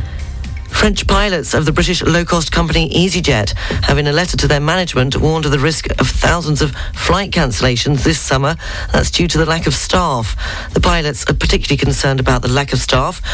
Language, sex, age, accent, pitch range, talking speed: English, female, 40-59, British, 115-155 Hz, 195 wpm